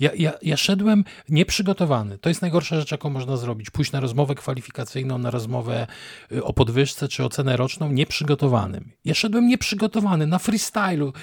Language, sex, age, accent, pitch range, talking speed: Polish, male, 40-59, native, 120-155 Hz, 155 wpm